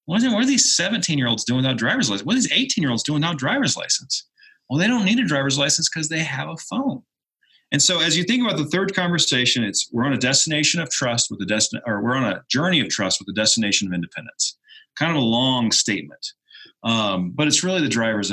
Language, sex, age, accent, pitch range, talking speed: English, male, 40-59, American, 125-185 Hz, 230 wpm